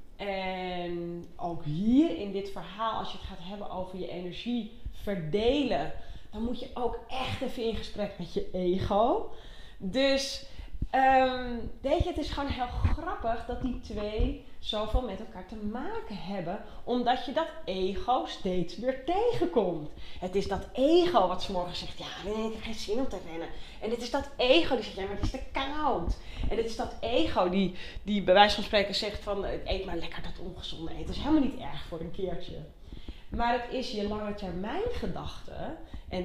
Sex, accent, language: female, Dutch, Dutch